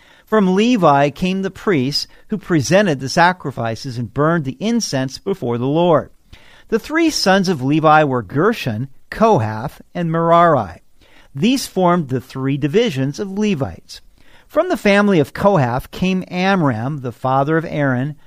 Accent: American